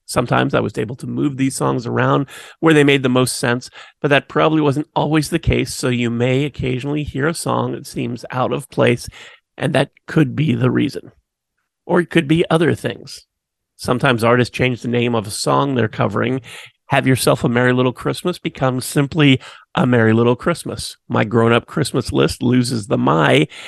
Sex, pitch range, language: male, 120-150 Hz, English